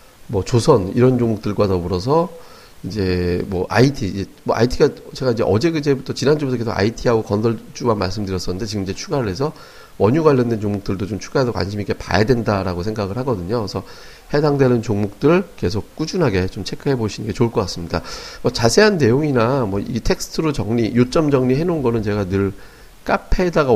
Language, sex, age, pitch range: Korean, male, 40-59, 95-125 Hz